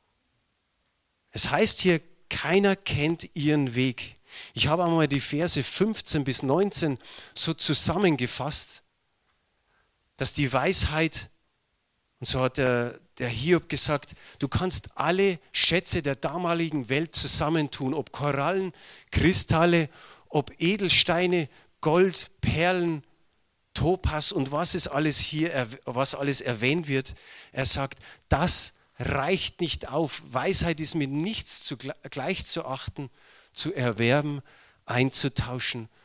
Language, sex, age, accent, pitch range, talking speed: German, male, 40-59, German, 125-165 Hz, 115 wpm